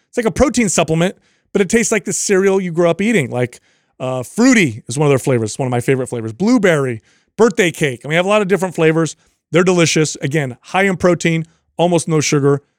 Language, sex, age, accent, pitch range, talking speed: English, male, 30-49, American, 140-190 Hz, 240 wpm